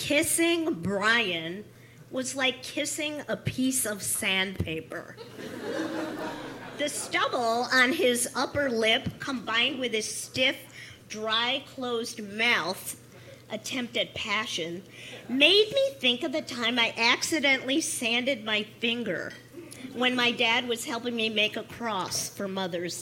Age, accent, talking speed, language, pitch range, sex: 40-59, American, 125 wpm, English, 215-285 Hz, female